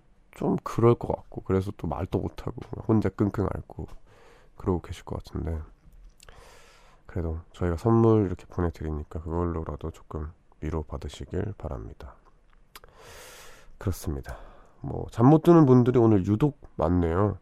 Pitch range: 85-105 Hz